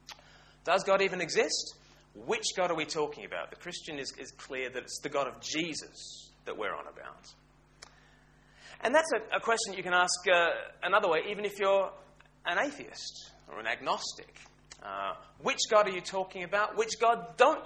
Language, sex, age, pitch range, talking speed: English, male, 30-49, 135-185 Hz, 185 wpm